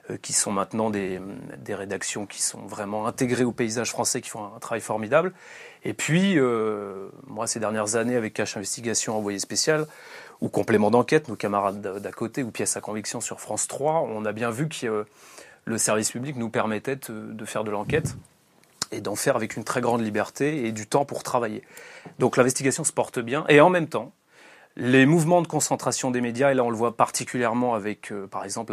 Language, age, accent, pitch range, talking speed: French, 30-49, French, 110-150 Hz, 205 wpm